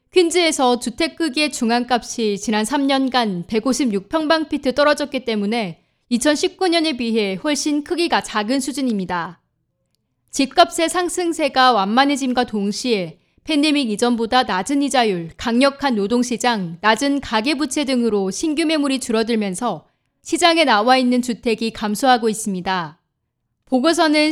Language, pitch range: Korean, 220-290 Hz